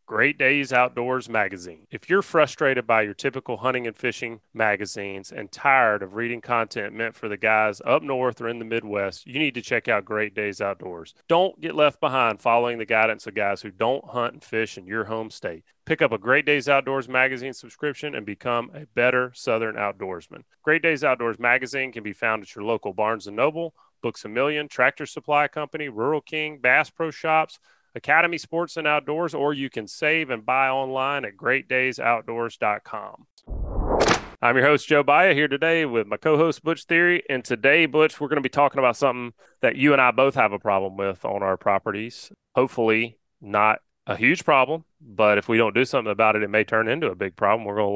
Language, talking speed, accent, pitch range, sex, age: English, 205 wpm, American, 110-145 Hz, male, 30-49